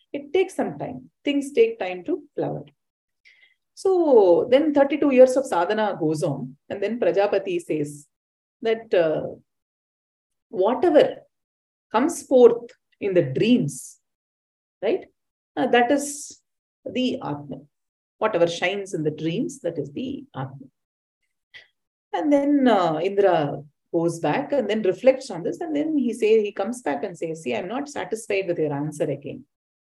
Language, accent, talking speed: English, Indian, 145 wpm